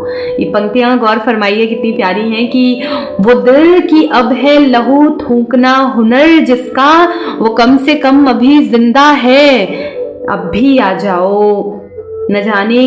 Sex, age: female, 30-49